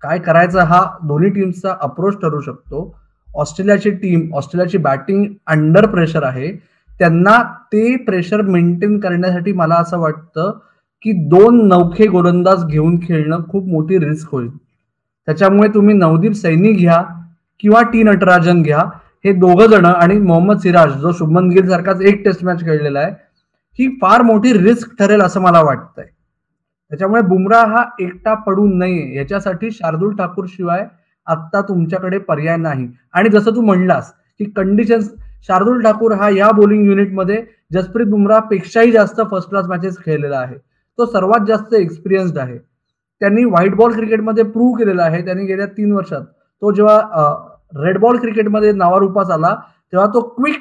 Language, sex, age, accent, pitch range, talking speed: Marathi, male, 20-39, native, 170-210 Hz, 145 wpm